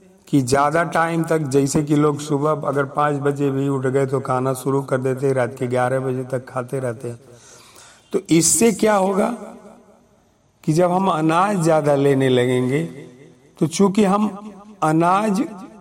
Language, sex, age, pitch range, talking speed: Hindi, male, 50-69, 130-165 Hz, 160 wpm